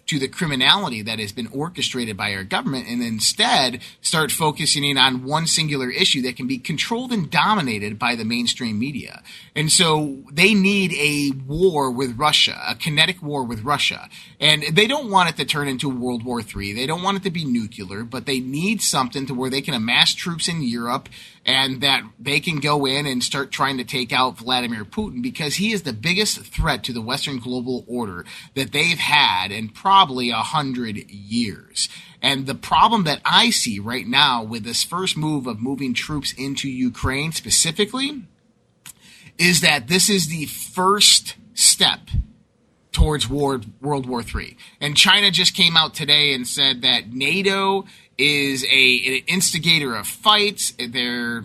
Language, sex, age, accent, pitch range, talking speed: English, male, 30-49, American, 125-165 Hz, 180 wpm